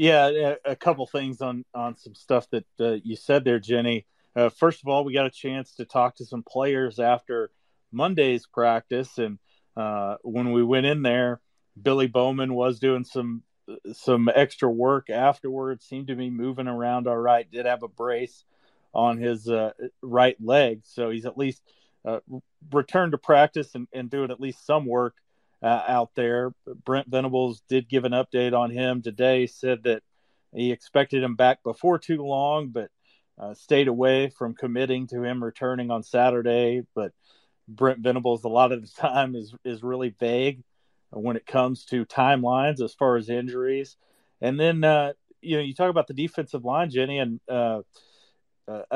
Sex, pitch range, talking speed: male, 120-135 Hz, 180 wpm